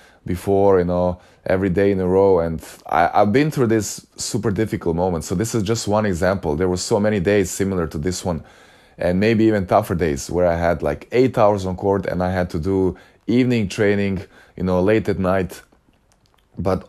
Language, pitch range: English, 90-105 Hz